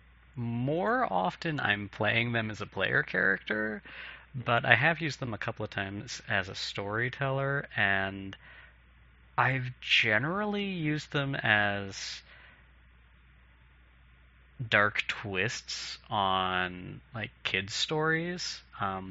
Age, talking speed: 30-49, 105 wpm